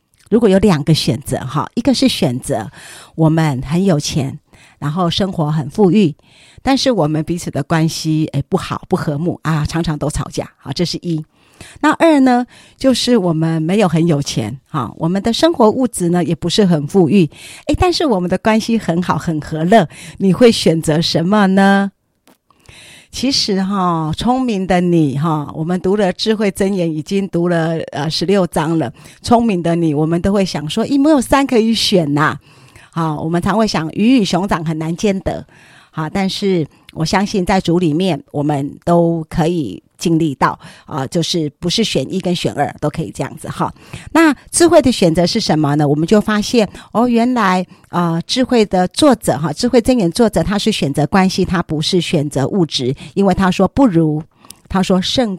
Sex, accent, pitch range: female, American, 160-215 Hz